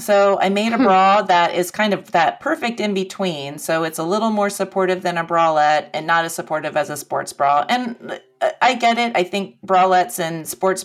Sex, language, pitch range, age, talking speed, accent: female, English, 160-200 Hz, 30-49, 215 wpm, American